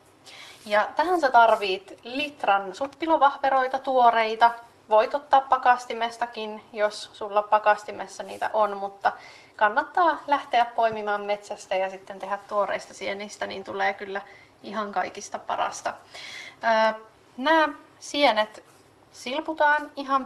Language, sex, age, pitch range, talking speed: Finnish, female, 30-49, 200-245 Hz, 100 wpm